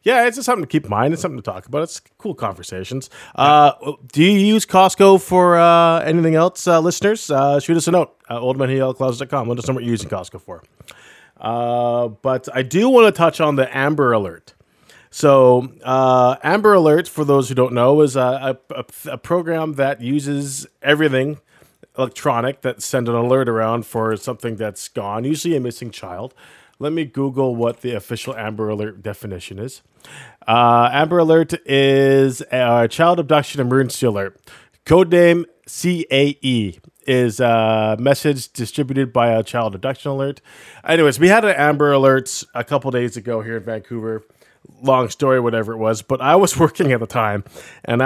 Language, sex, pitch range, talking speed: English, male, 120-150 Hz, 175 wpm